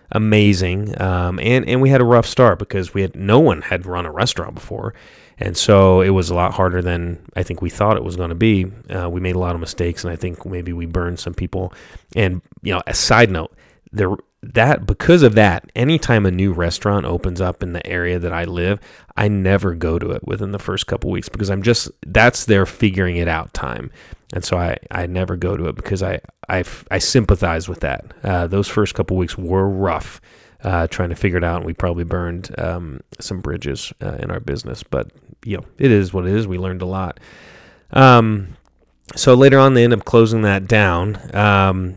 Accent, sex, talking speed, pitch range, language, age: American, male, 220 wpm, 90-105 Hz, English, 30-49